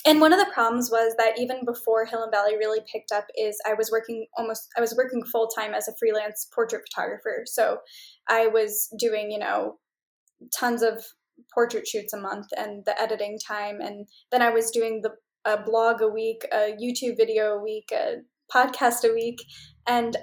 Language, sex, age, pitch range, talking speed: English, female, 10-29, 220-255 Hz, 195 wpm